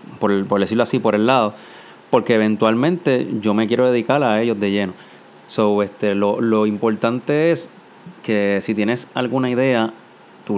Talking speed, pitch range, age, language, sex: 170 wpm, 100-120 Hz, 30-49, Spanish, male